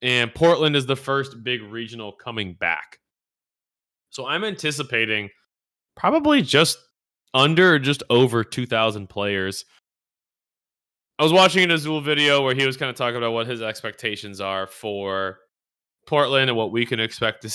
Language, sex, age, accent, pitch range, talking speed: English, male, 20-39, American, 105-135 Hz, 150 wpm